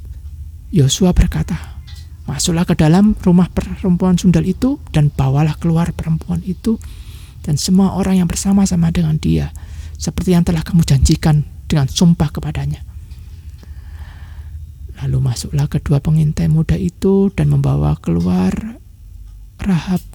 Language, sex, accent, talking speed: Indonesian, male, native, 115 wpm